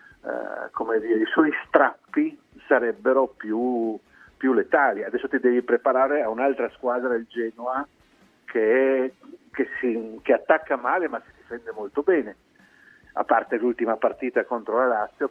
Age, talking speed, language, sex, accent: 50-69, 140 wpm, Italian, male, native